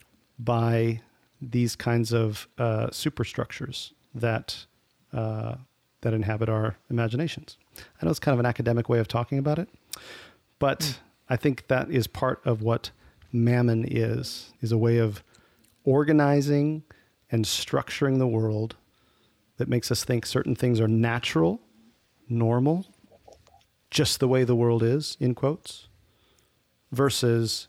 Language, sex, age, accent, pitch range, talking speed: English, male, 40-59, American, 110-135 Hz, 130 wpm